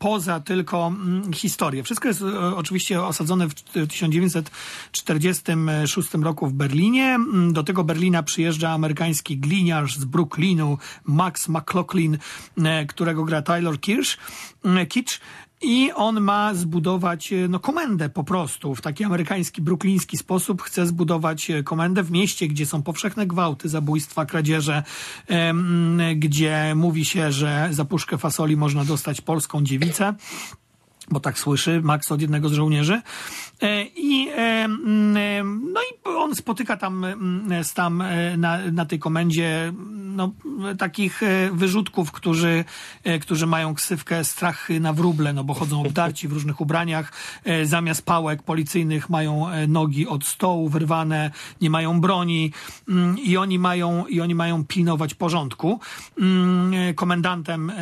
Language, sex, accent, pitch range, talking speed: Polish, male, native, 155-185 Hz, 120 wpm